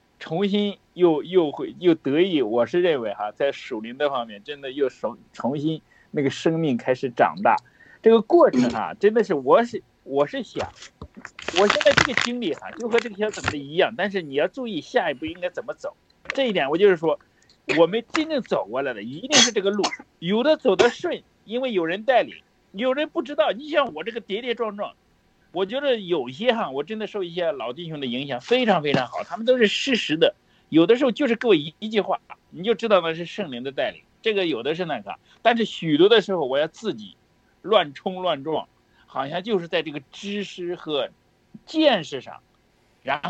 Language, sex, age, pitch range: Chinese, male, 50-69, 170-255 Hz